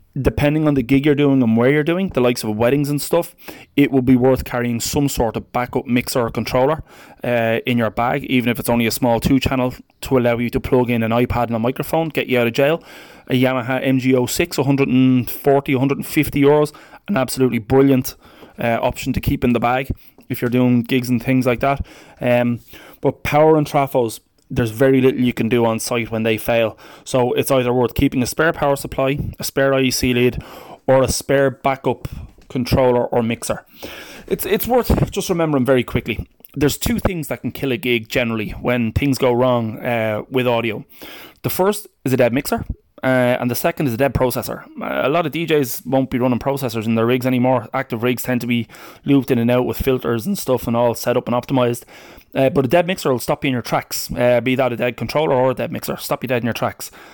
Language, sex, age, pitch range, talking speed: English, male, 20-39, 120-140 Hz, 220 wpm